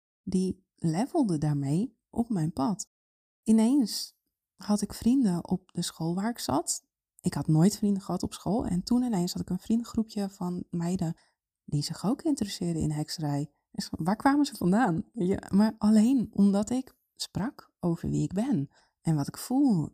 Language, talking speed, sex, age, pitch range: Dutch, 165 wpm, female, 20-39, 155-205 Hz